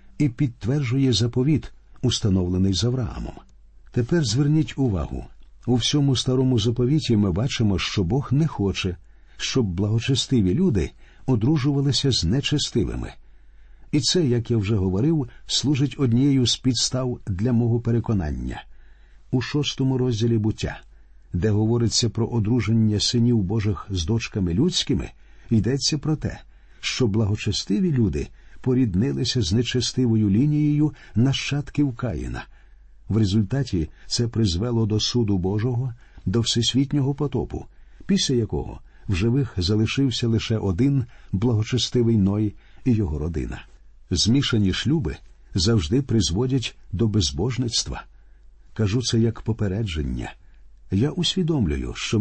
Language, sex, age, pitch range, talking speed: Ukrainian, male, 50-69, 95-130 Hz, 115 wpm